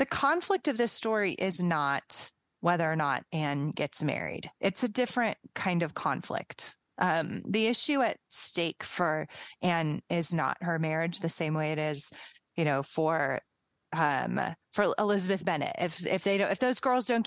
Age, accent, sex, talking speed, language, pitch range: 30-49, American, female, 175 wpm, English, 160-210 Hz